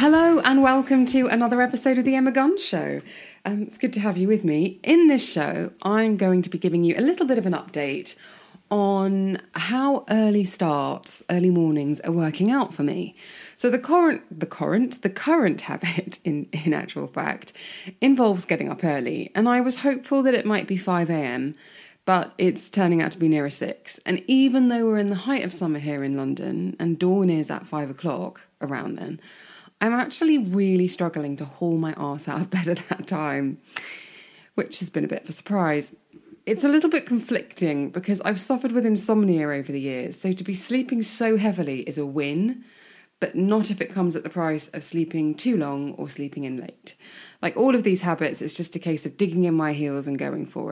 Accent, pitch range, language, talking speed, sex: British, 160-240 Hz, English, 205 wpm, female